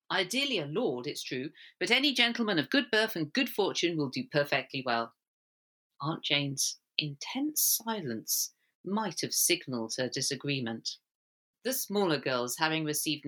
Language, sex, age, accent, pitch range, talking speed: English, female, 40-59, British, 135-190 Hz, 145 wpm